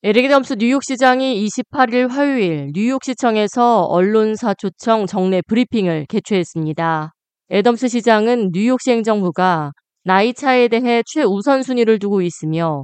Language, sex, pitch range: Korean, female, 180-245 Hz